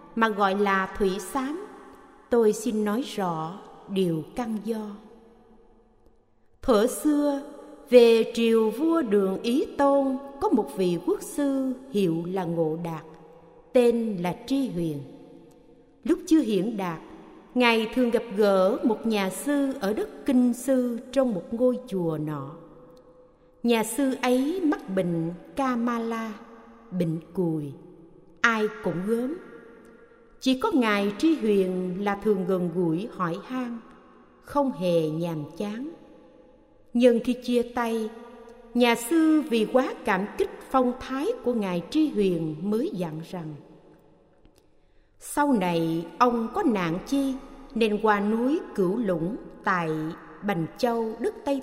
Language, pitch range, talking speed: Vietnamese, 185-260 Hz, 130 wpm